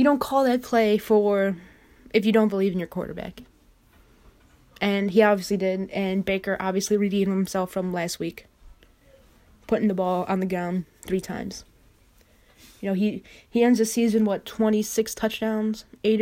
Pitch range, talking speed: 180-215 Hz, 165 wpm